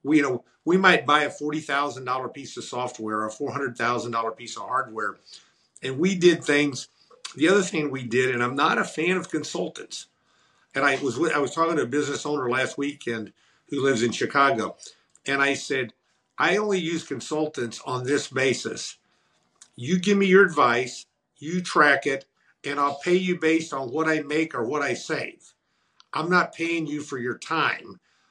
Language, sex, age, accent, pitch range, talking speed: English, male, 50-69, American, 130-170 Hz, 180 wpm